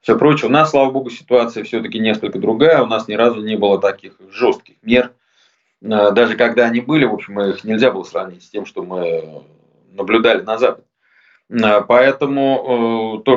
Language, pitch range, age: Russian, 115-150 Hz, 20-39